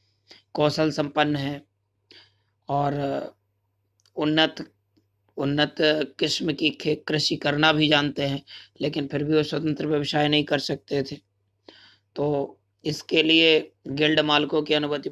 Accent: native